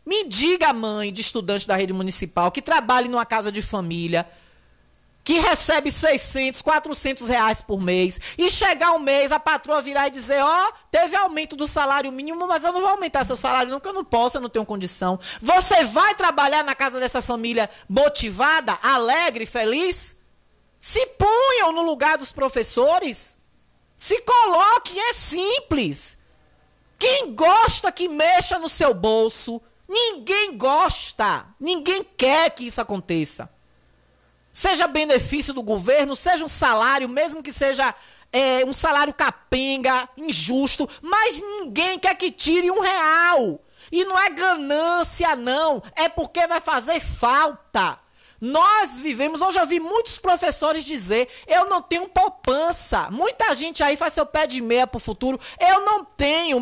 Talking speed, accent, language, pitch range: 150 wpm, Brazilian, Portuguese, 255-350 Hz